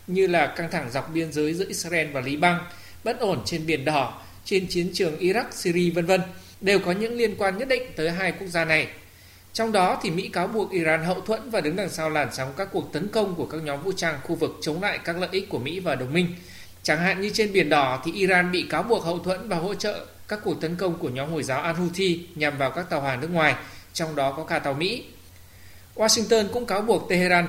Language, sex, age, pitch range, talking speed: Vietnamese, male, 20-39, 150-190 Hz, 250 wpm